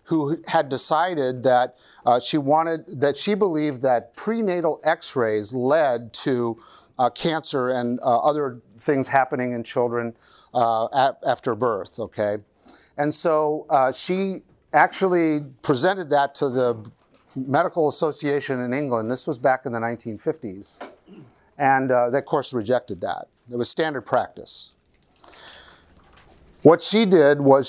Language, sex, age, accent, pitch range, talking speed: English, male, 50-69, American, 120-155 Hz, 135 wpm